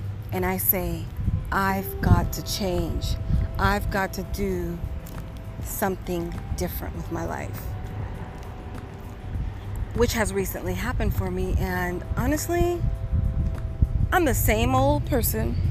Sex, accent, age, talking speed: female, American, 30-49, 110 wpm